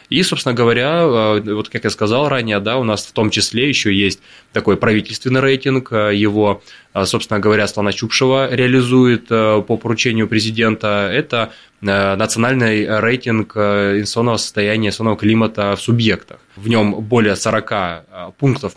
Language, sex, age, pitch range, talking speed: Russian, male, 20-39, 105-125 Hz, 130 wpm